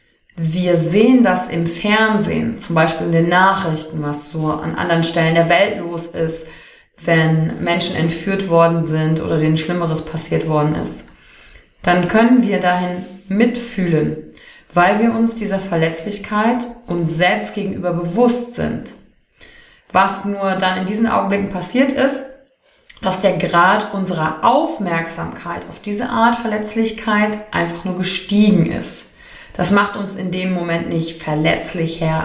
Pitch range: 165-210 Hz